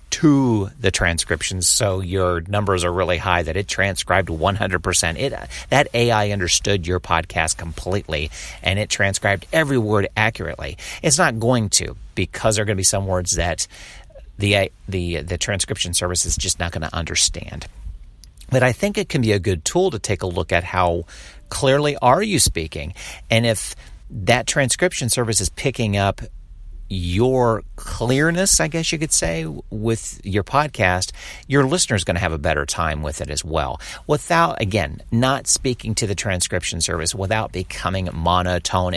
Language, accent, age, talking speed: English, American, 50-69, 170 wpm